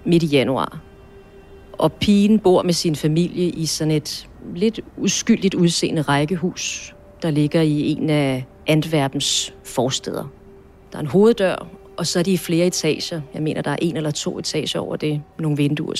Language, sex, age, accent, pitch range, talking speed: Danish, female, 40-59, native, 145-180 Hz, 175 wpm